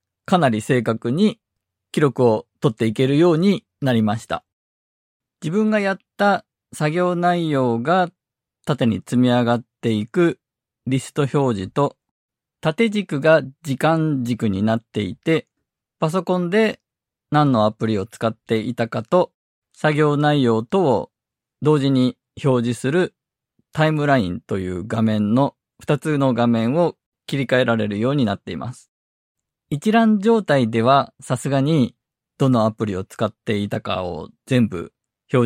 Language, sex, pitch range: Japanese, male, 115-155 Hz